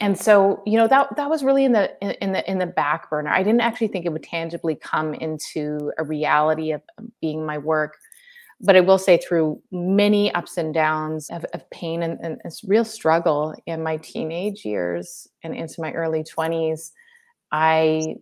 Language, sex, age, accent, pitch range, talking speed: English, female, 30-49, American, 155-195 Hz, 195 wpm